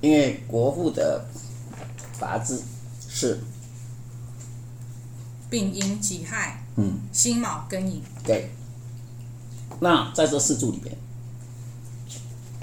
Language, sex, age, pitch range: Chinese, male, 50-69, 120-125 Hz